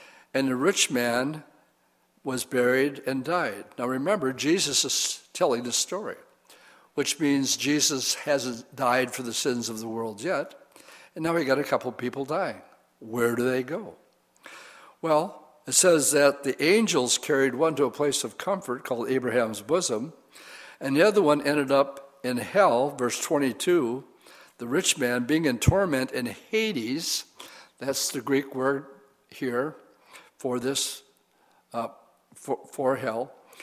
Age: 60-79